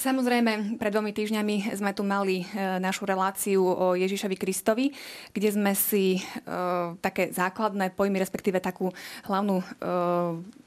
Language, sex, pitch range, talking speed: Slovak, female, 180-215 Hz, 135 wpm